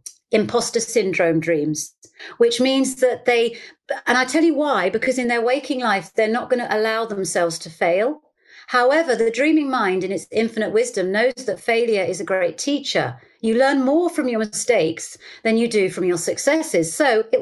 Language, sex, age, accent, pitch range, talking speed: English, female, 40-59, British, 205-290 Hz, 185 wpm